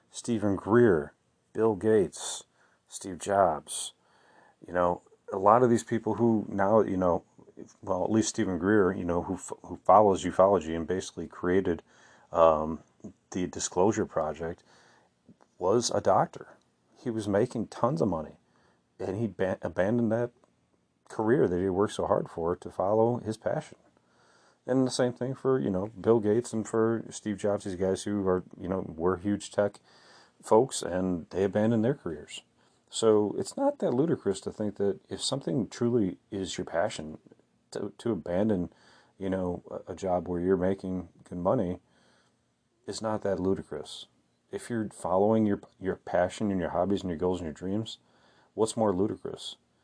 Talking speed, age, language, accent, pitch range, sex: 165 wpm, 30-49, English, American, 90-110 Hz, male